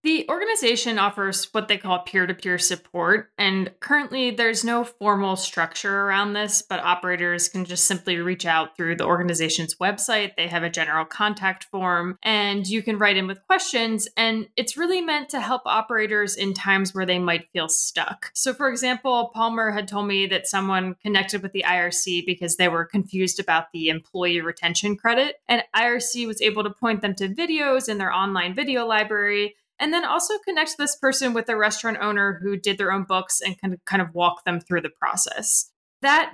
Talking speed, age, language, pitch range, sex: 190 wpm, 20-39, English, 185-230 Hz, female